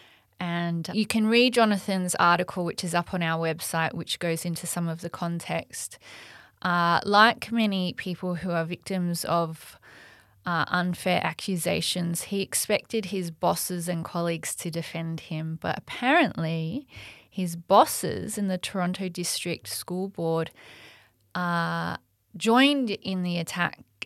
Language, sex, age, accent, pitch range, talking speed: English, female, 20-39, Australian, 165-185 Hz, 135 wpm